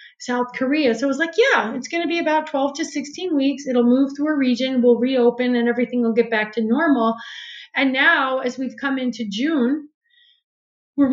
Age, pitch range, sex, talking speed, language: 30-49, 235-280 Hz, female, 205 wpm, English